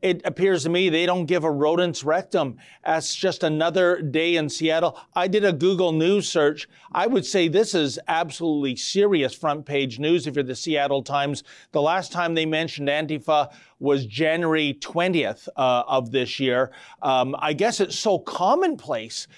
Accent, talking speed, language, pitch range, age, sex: American, 175 wpm, English, 145-195 Hz, 40-59, male